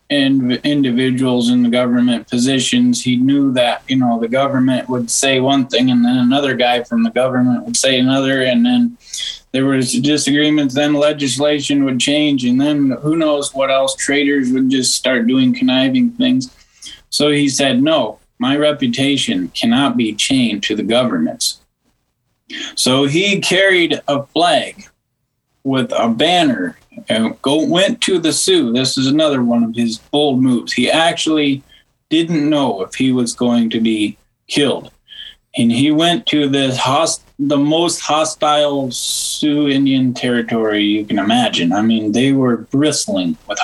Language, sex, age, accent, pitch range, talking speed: English, male, 20-39, American, 125-170 Hz, 155 wpm